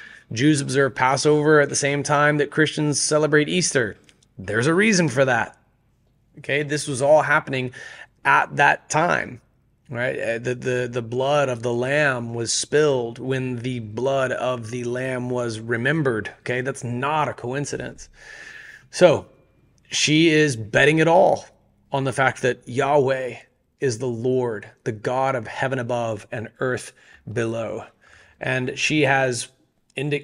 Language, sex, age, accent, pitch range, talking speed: English, male, 30-49, American, 125-150 Hz, 145 wpm